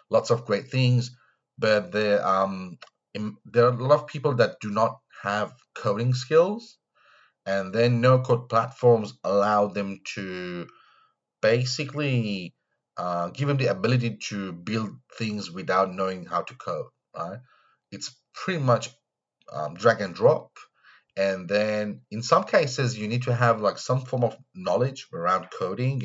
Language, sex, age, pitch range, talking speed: English, male, 30-49, 100-130 Hz, 150 wpm